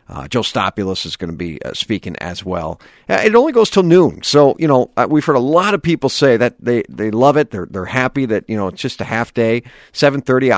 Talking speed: 255 wpm